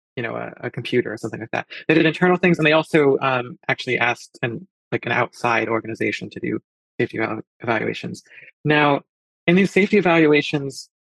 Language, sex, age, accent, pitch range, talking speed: English, female, 30-49, American, 120-155 Hz, 175 wpm